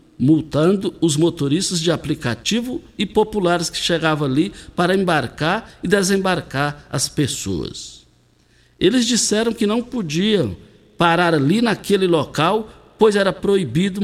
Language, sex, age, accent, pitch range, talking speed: Portuguese, male, 60-79, Brazilian, 140-190 Hz, 120 wpm